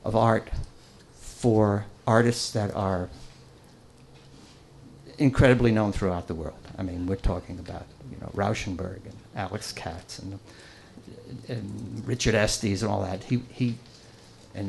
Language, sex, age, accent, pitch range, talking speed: English, male, 60-79, American, 100-145 Hz, 130 wpm